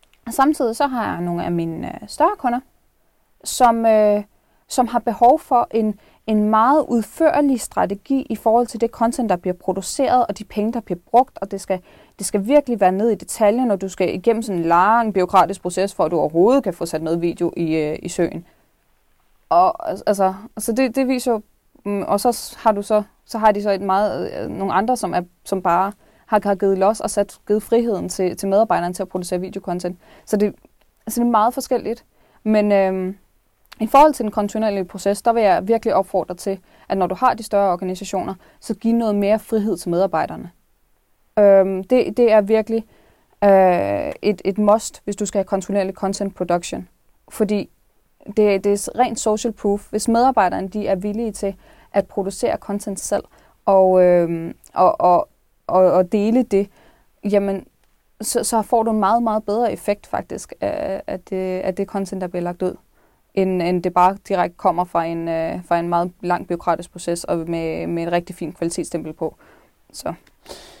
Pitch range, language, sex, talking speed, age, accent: 185-225 Hz, Danish, female, 185 wpm, 20-39, native